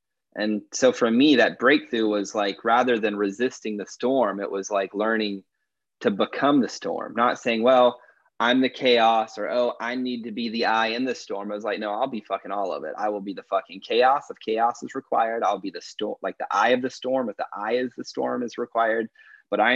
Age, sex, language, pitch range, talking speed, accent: 30-49, male, English, 105-130 Hz, 235 wpm, American